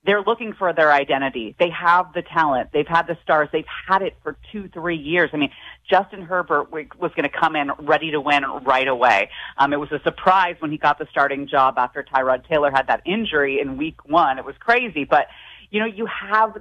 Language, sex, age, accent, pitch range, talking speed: English, female, 30-49, American, 150-200 Hz, 225 wpm